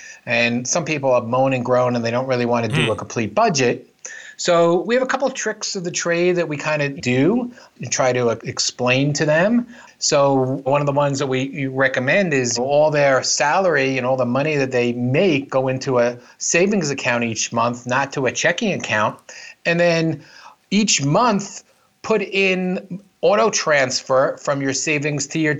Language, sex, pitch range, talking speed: English, male, 130-180 Hz, 190 wpm